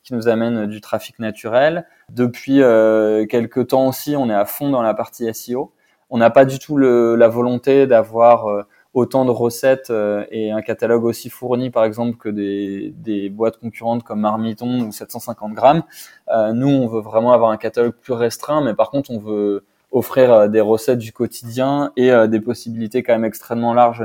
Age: 20-39